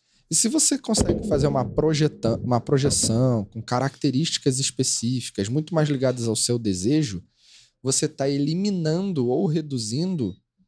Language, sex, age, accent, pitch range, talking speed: Portuguese, male, 20-39, Brazilian, 130-180 Hz, 125 wpm